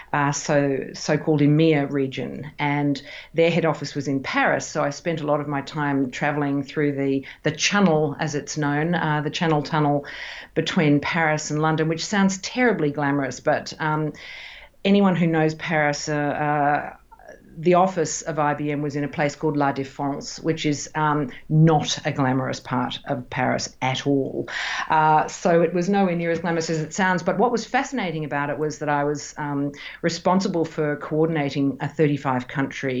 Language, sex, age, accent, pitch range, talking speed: English, female, 50-69, Australian, 145-170 Hz, 180 wpm